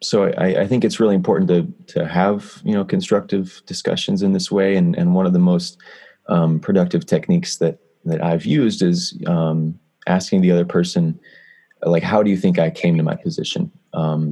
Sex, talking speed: male, 195 wpm